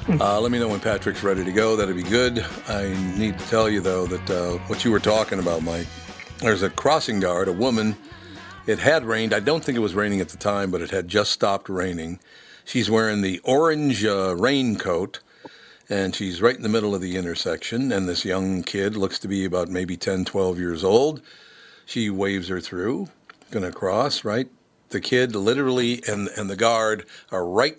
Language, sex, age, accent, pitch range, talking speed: English, male, 60-79, American, 95-115 Hz, 205 wpm